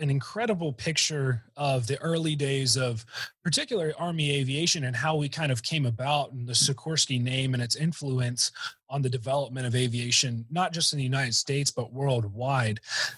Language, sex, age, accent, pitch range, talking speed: English, male, 30-49, American, 125-145 Hz, 175 wpm